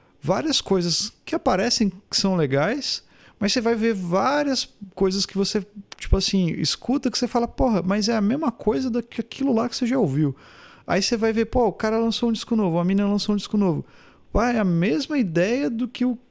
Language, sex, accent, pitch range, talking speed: Portuguese, male, Brazilian, 155-210 Hz, 215 wpm